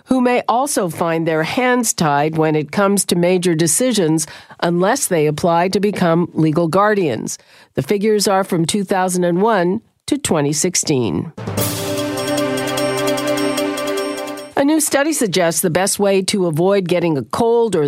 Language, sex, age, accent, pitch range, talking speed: English, female, 50-69, American, 155-215 Hz, 135 wpm